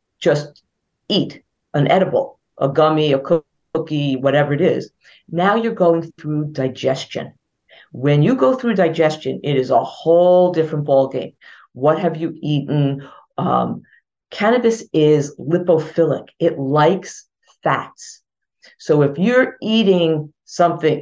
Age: 50-69